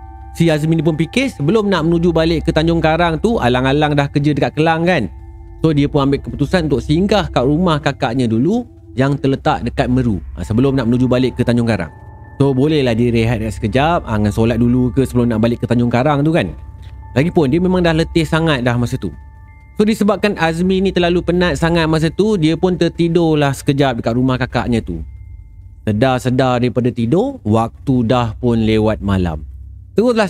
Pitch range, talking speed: 115-170 Hz, 185 wpm